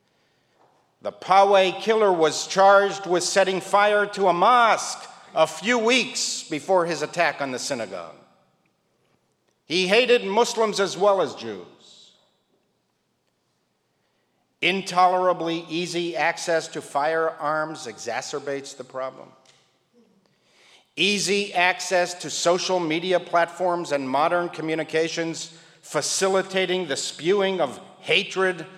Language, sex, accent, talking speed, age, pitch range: English, male, American, 100 wpm, 50-69, 155-195 Hz